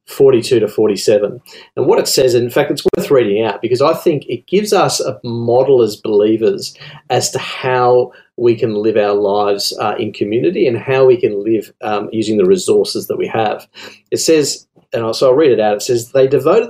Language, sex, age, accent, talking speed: English, male, 40-59, Australian, 210 wpm